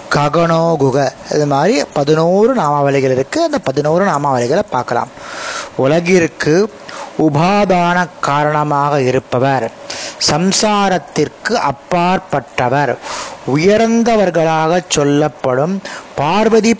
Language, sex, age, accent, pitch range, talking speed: Tamil, male, 30-49, native, 145-195 Hz, 60 wpm